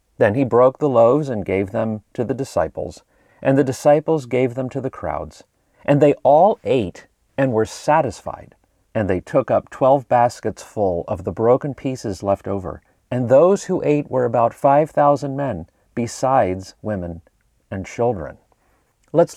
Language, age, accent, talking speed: English, 40-59, American, 165 wpm